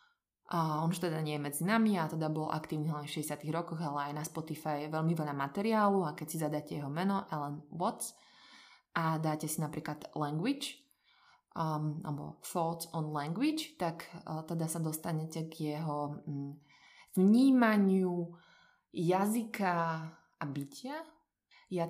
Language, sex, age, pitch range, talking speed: Slovak, female, 20-39, 150-175 Hz, 145 wpm